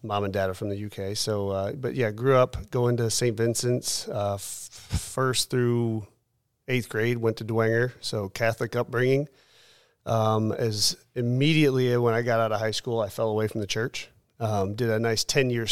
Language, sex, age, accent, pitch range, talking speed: English, male, 30-49, American, 110-125 Hz, 195 wpm